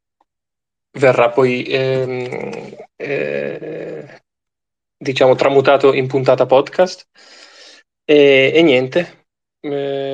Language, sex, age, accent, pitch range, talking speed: Italian, male, 20-39, native, 125-150 Hz, 75 wpm